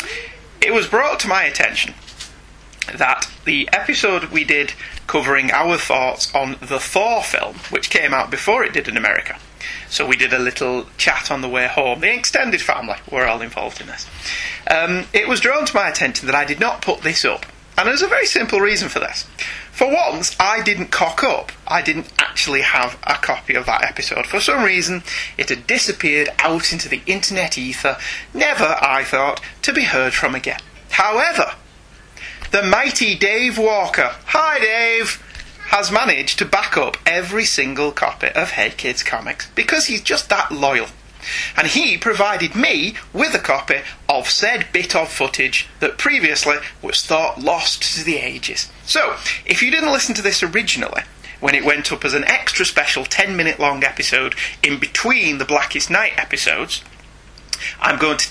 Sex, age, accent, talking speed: male, 30-49, British, 180 wpm